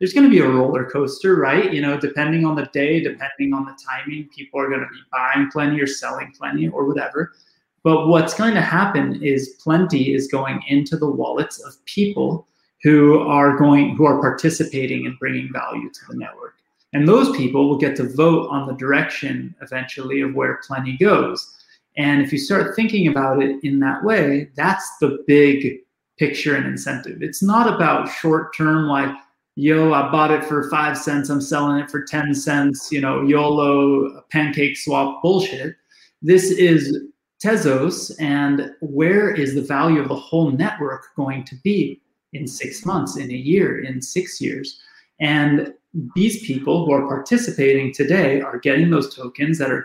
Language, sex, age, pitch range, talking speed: English, male, 30-49, 140-160 Hz, 180 wpm